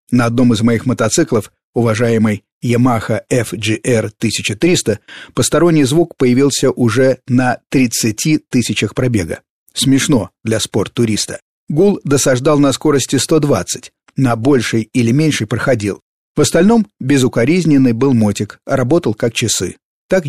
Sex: male